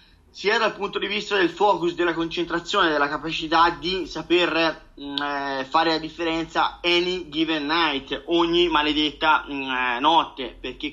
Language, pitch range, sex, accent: Italian, 145-175 Hz, male, native